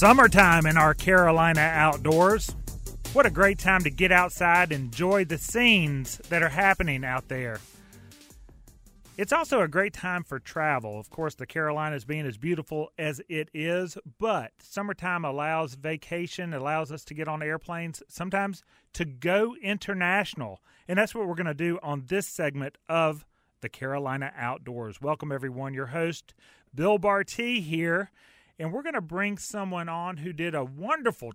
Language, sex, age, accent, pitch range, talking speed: English, male, 30-49, American, 145-185 Hz, 160 wpm